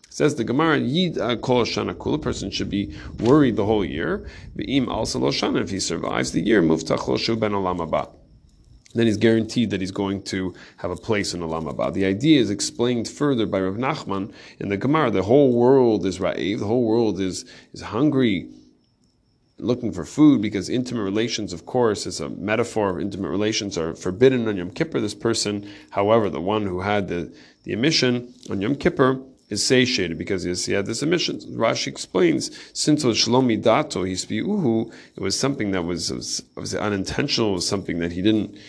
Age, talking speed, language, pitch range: 30-49, 185 wpm, English, 95-120 Hz